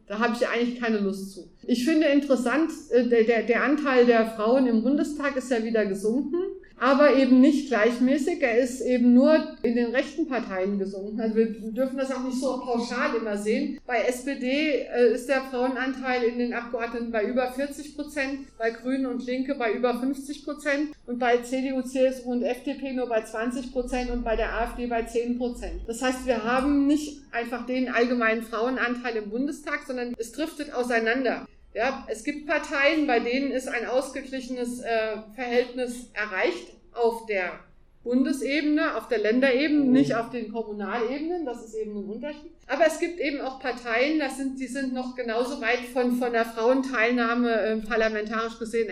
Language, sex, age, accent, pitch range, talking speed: German, female, 50-69, German, 230-275 Hz, 175 wpm